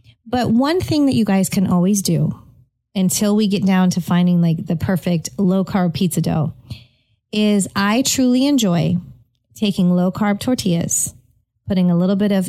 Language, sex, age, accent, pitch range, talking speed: English, female, 30-49, American, 175-210 Hz, 170 wpm